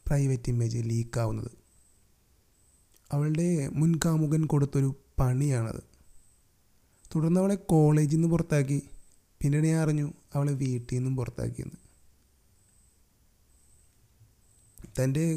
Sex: male